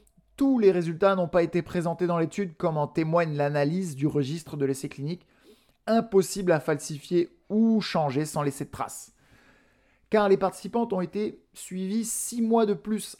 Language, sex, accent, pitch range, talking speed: French, male, French, 145-190 Hz, 170 wpm